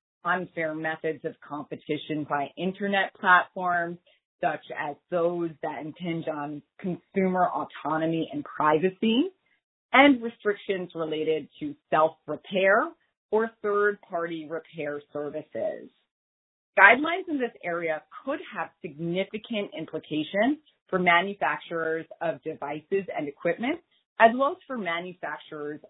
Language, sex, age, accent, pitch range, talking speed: English, female, 30-49, American, 155-205 Hz, 105 wpm